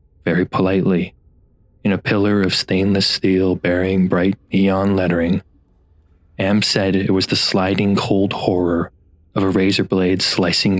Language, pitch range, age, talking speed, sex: English, 90-105 Hz, 20-39, 140 wpm, male